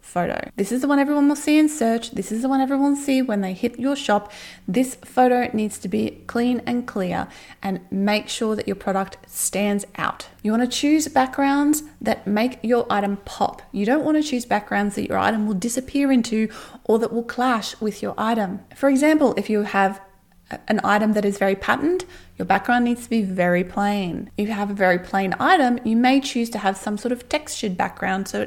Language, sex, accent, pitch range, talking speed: English, female, Australian, 200-255 Hz, 215 wpm